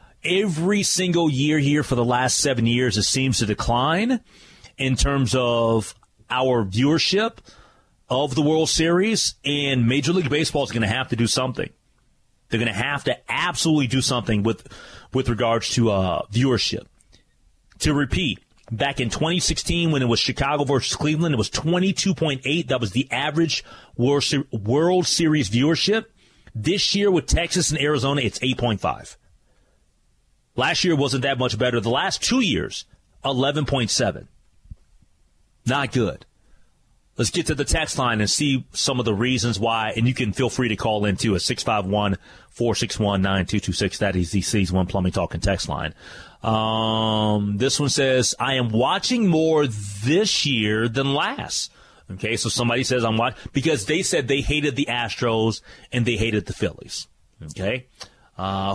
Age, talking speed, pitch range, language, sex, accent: 30-49, 160 wpm, 110-150 Hz, English, male, American